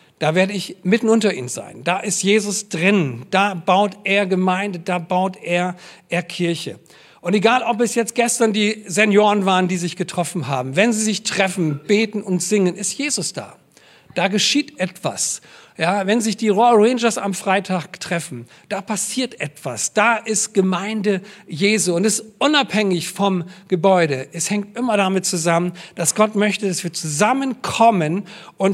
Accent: German